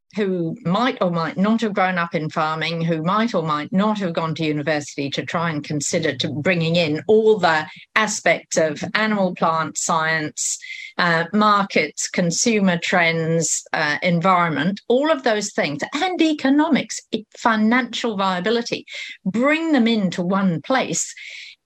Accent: British